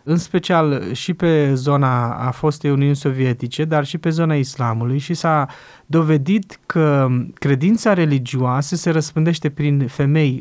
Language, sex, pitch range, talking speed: Romanian, male, 135-165 Hz, 140 wpm